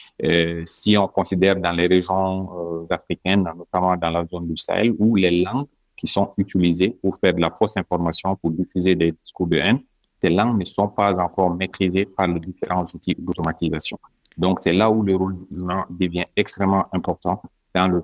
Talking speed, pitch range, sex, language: 185 wpm, 85-100 Hz, male, French